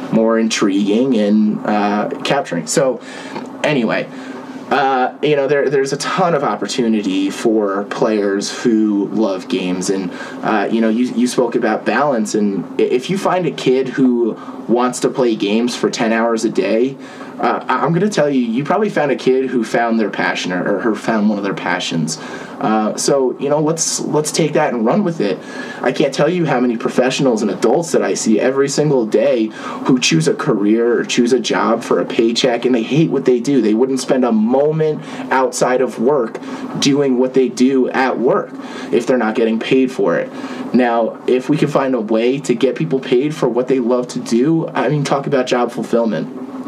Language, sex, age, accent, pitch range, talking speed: English, male, 20-39, American, 110-145 Hz, 200 wpm